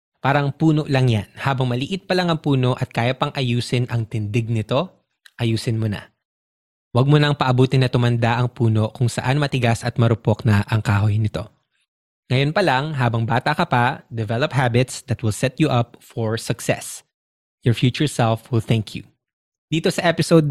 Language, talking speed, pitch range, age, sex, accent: English, 175 wpm, 120-150 Hz, 20-39, male, Filipino